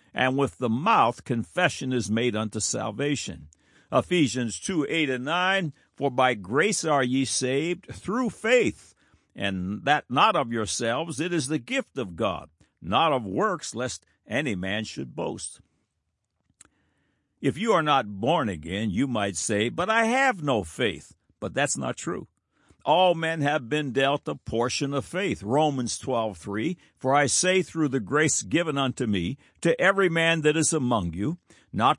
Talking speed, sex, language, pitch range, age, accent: 165 wpm, male, English, 110-160 Hz, 60-79, American